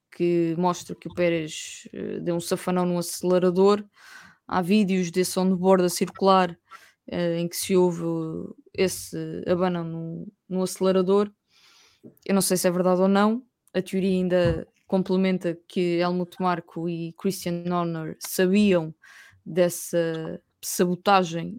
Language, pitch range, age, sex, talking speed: English, 170-190 Hz, 20-39, female, 135 wpm